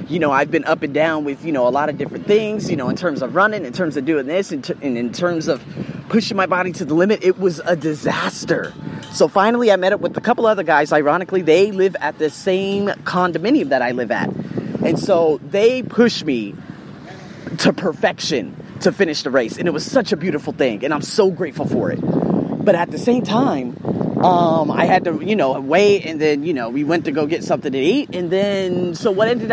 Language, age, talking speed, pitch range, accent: English, 30-49, 235 wpm, 160-215 Hz, American